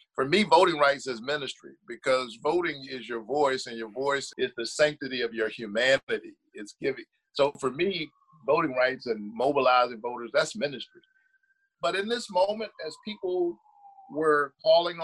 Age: 50-69